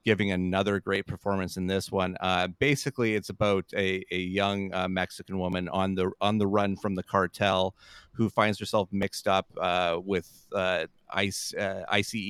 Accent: American